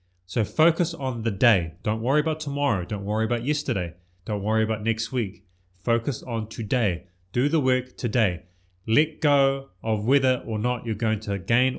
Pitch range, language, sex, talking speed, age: 105-130 Hz, English, male, 180 wpm, 30-49